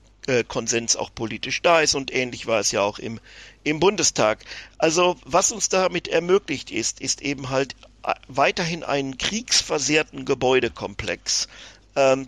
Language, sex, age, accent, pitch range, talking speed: German, male, 50-69, German, 115-150 Hz, 135 wpm